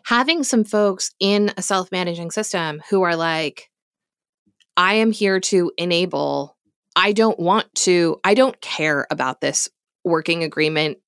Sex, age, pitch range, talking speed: female, 20-39, 160-195 Hz, 140 wpm